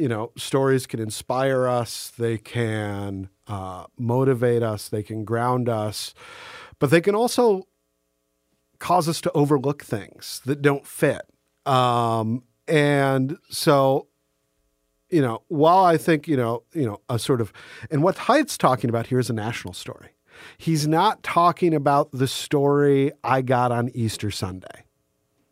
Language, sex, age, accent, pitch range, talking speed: English, male, 40-59, American, 115-150 Hz, 150 wpm